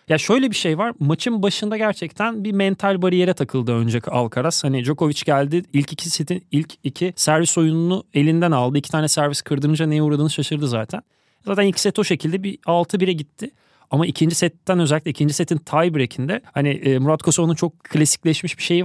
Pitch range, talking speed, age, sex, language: 150-185 Hz, 180 wpm, 30-49, male, Turkish